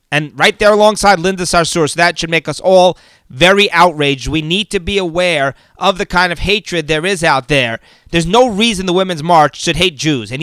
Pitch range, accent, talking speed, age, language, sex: 160-200 Hz, American, 220 wpm, 30-49, English, male